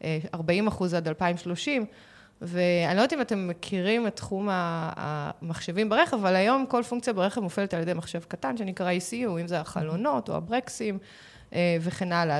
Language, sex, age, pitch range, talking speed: Hebrew, female, 20-39, 175-220 Hz, 160 wpm